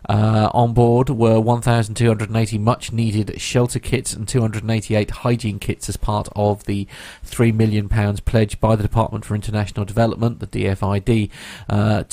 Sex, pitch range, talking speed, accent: male, 105-120 Hz, 140 wpm, British